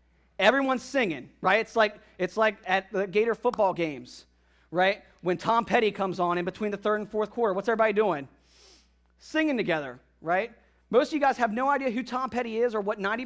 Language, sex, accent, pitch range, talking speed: English, male, American, 160-230 Hz, 205 wpm